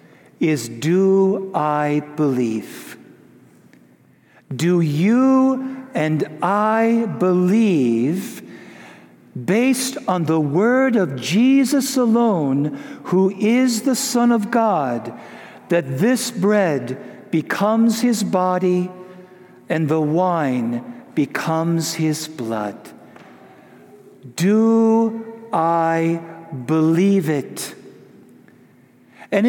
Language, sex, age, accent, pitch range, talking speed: English, male, 60-79, American, 165-245 Hz, 80 wpm